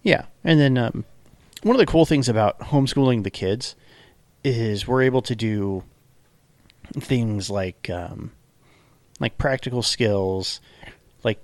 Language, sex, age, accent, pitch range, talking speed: English, male, 40-59, American, 95-120 Hz, 130 wpm